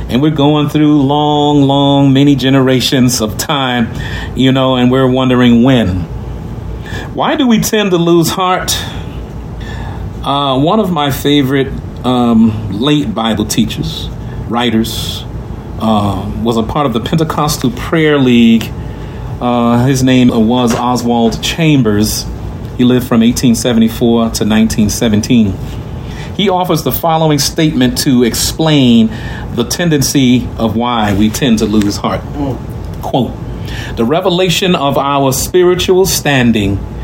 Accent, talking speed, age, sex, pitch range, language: American, 125 wpm, 40-59, male, 110-140 Hz, English